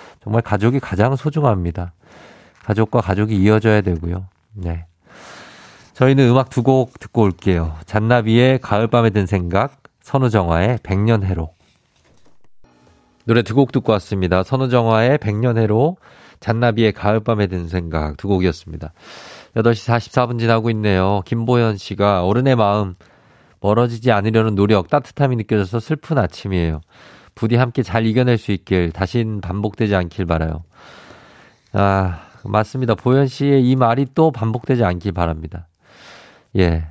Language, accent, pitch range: Korean, native, 95-120 Hz